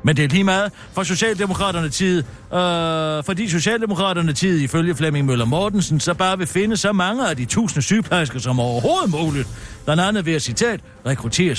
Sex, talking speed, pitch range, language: male, 190 wpm, 130-195 Hz, Danish